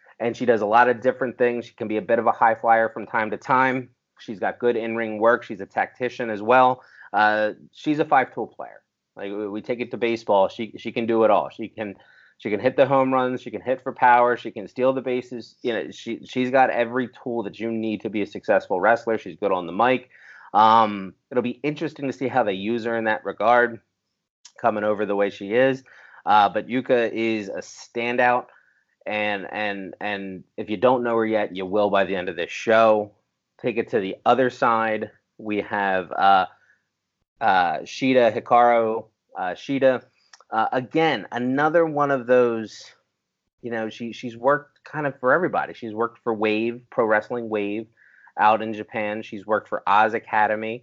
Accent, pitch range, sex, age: American, 105-125 Hz, male, 30-49